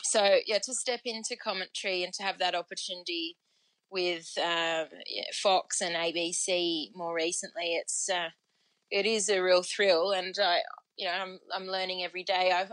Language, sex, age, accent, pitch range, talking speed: English, female, 20-39, Australian, 175-205 Hz, 165 wpm